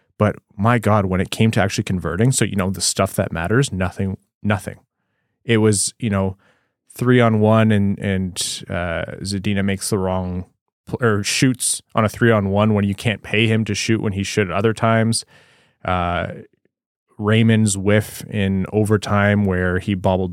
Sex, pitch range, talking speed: male, 95-115 Hz, 180 wpm